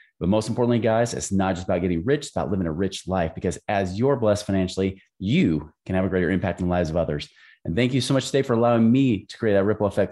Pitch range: 95-130 Hz